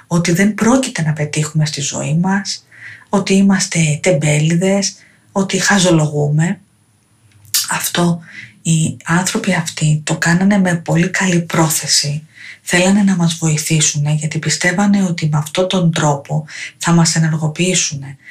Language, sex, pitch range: Greek, female, 155-190 Hz